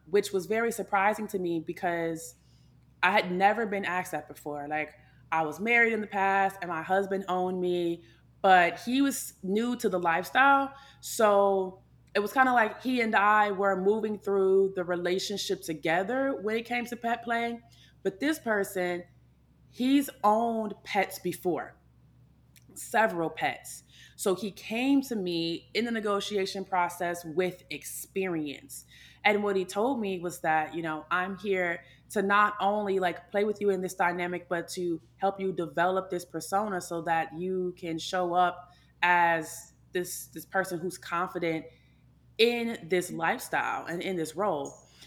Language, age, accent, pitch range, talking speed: English, 20-39, American, 170-205 Hz, 160 wpm